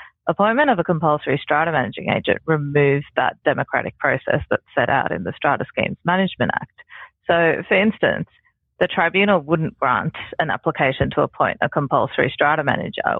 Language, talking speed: English, 160 wpm